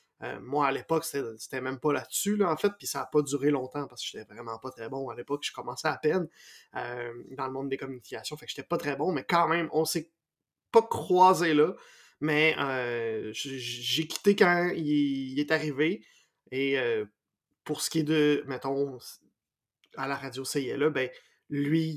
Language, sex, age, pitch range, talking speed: French, male, 20-39, 135-165 Hz, 205 wpm